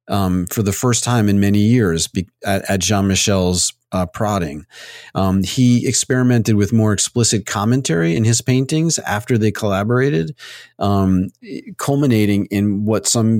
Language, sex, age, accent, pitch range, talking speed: English, male, 40-59, American, 95-110 Hz, 150 wpm